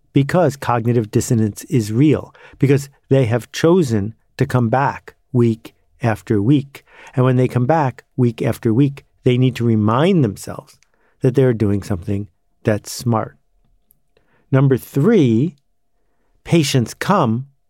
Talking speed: 130 wpm